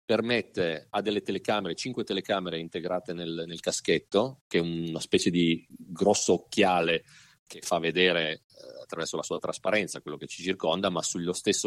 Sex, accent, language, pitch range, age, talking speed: male, native, Italian, 85-115 Hz, 40-59, 165 wpm